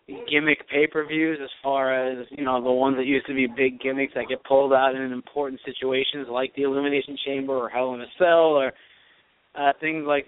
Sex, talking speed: male, 205 wpm